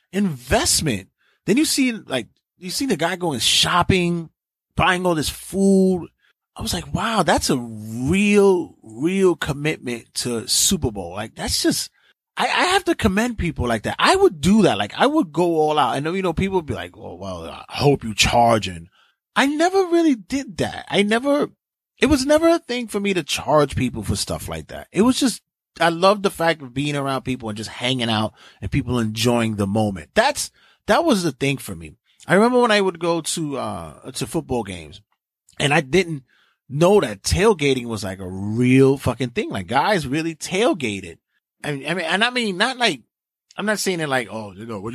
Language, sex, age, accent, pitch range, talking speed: English, male, 30-49, American, 120-205 Hz, 205 wpm